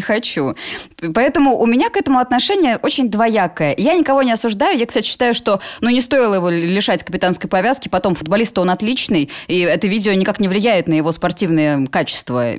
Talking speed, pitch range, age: 180 wpm, 190-265 Hz, 20-39